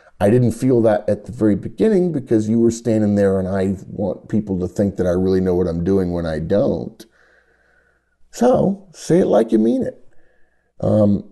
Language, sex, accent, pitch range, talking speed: English, male, American, 95-135 Hz, 195 wpm